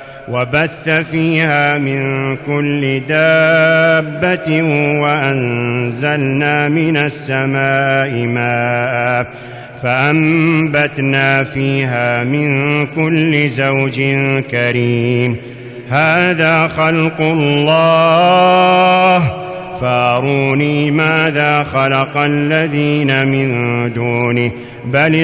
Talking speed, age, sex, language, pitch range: 60 wpm, 40-59, male, Arabic, 125-155 Hz